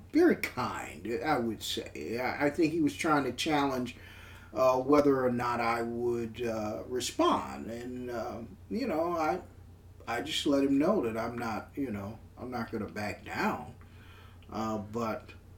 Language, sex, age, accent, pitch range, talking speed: English, male, 40-59, American, 100-140 Hz, 160 wpm